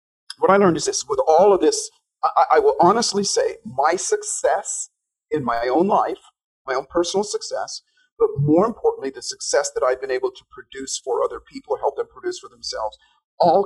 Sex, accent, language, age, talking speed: male, American, English, 40-59, 195 wpm